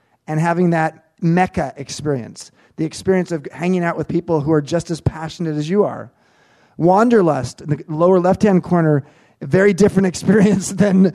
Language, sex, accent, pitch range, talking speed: English, male, American, 175-210 Hz, 160 wpm